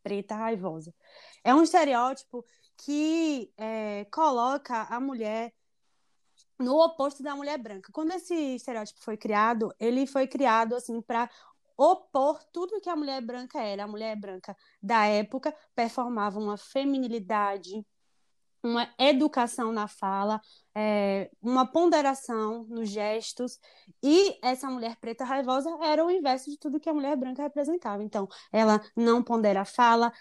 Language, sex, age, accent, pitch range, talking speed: Portuguese, female, 20-39, Brazilian, 215-285 Hz, 135 wpm